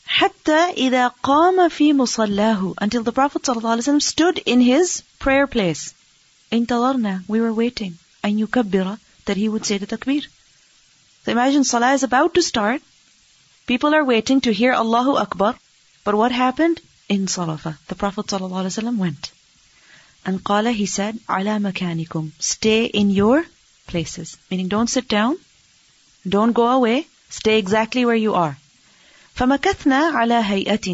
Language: English